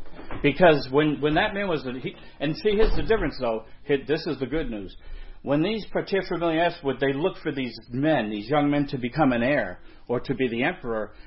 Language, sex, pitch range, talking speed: English, male, 110-160 Hz, 220 wpm